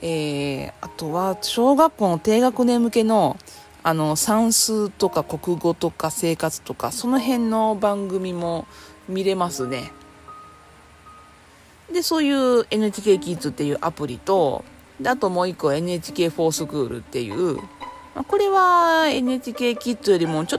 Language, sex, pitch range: Japanese, female, 150-245 Hz